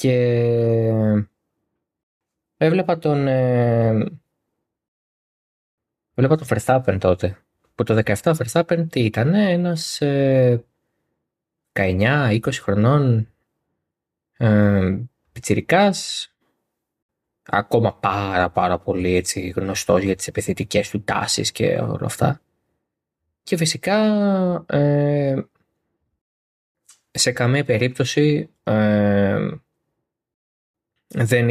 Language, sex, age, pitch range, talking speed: Greek, male, 20-39, 100-135 Hz, 75 wpm